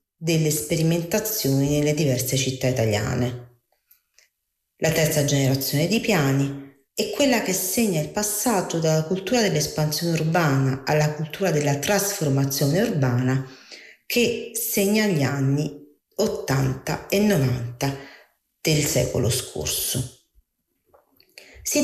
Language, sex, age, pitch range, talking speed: Italian, female, 40-59, 135-200 Hz, 100 wpm